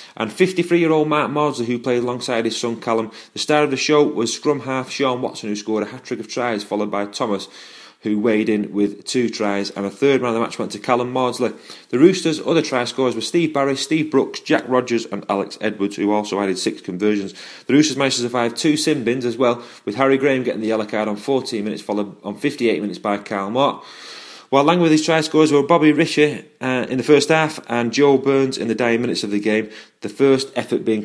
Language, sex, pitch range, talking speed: English, male, 110-150 Hz, 230 wpm